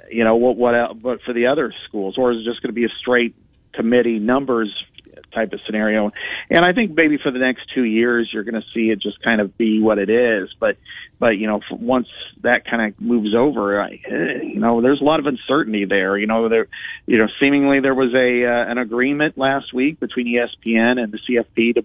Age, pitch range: 40-59, 115-140 Hz